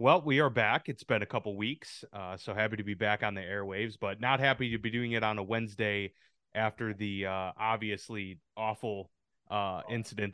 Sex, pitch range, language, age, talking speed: male, 100-110 Hz, English, 30-49, 205 wpm